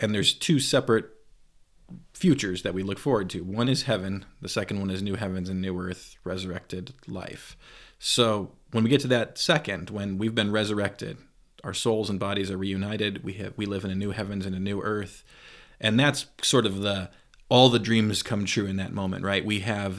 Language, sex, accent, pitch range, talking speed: English, male, American, 95-115 Hz, 205 wpm